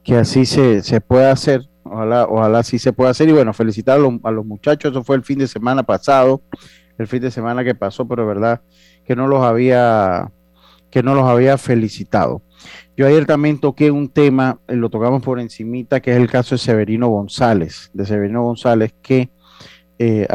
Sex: male